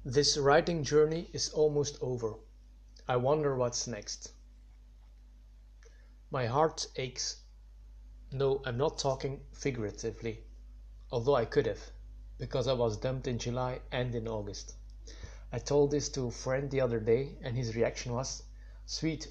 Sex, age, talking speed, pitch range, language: male, 30-49, 140 wpm, 110-135 Hz, English